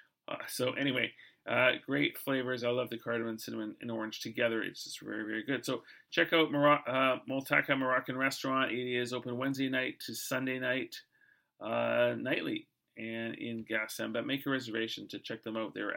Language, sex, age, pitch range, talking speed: English, male, 40-59, 115-145 Hz, 185 wpm